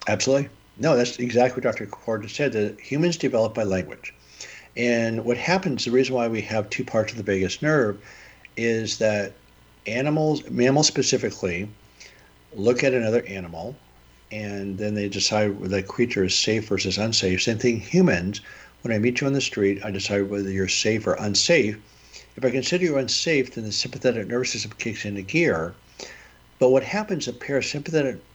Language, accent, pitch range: English, American, 100-130 Hz